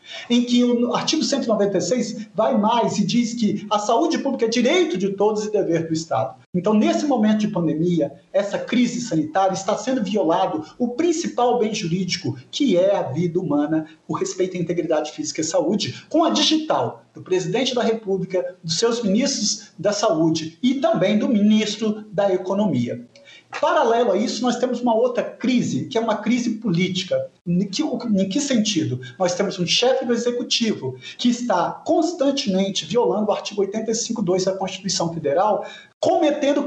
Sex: male